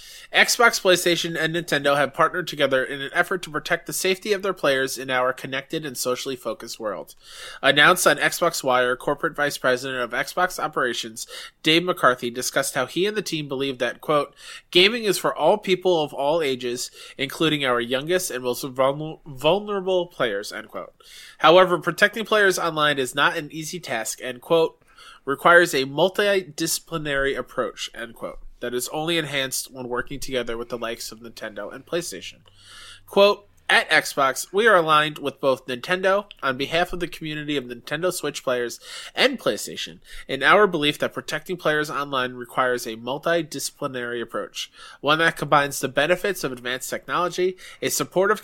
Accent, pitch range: American, 130-175 Hz